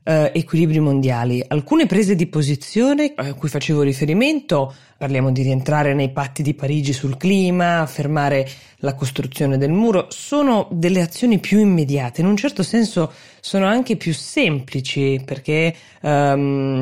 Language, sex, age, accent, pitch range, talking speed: Italian, female, 20-39, native, 140-175 Hz, 140 wpm